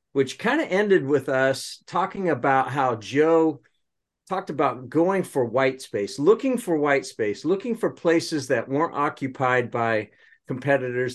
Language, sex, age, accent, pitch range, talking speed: English, male, 50-69, American, 130-180 Hz, 150 wpm